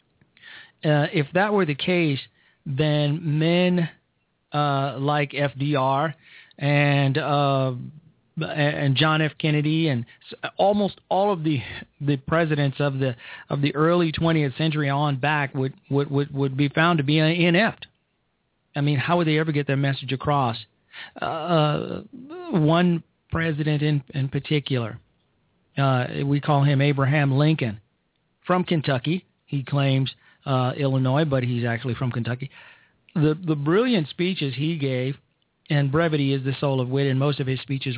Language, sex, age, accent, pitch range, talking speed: English, male, 40-59, American, 135-165 Hz, 145 wpm